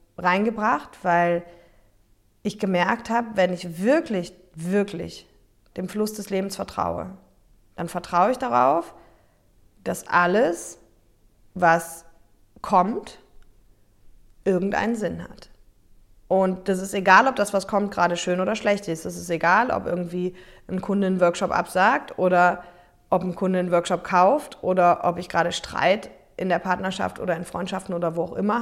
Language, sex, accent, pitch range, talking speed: German, female, German, 170-200 Hz, 145 wpm